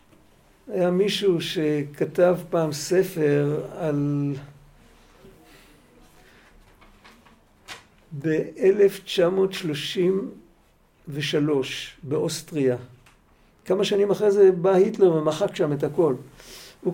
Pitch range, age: 145-195 Hz, 50-69